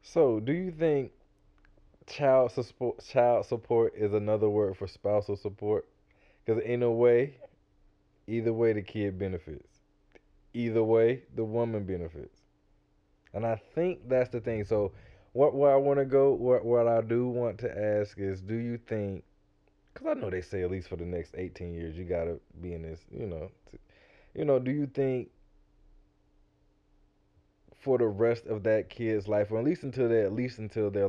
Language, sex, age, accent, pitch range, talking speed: English, male, 20-39, American, 105-125 Hz, 175 wpm